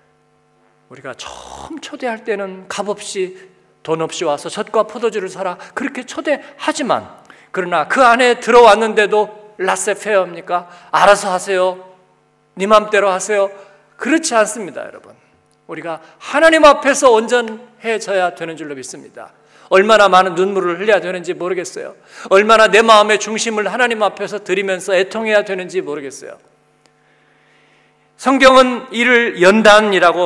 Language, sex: Korean, male